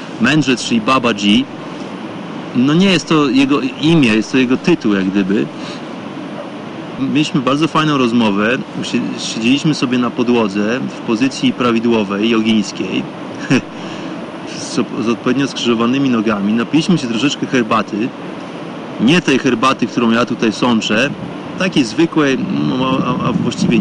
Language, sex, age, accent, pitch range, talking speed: Polish, male, 30-49, native, 120-160 Hz, 120 wpm